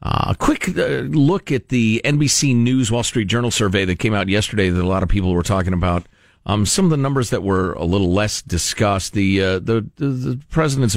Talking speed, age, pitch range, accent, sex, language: 230 wpm, 50-69, 95-140 Hz, American, male, English